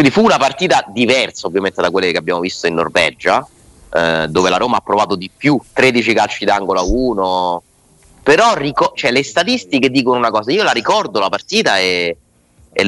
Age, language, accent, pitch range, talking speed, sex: 30-49, Italian, native, 95-120 Hz, 180 wpm, male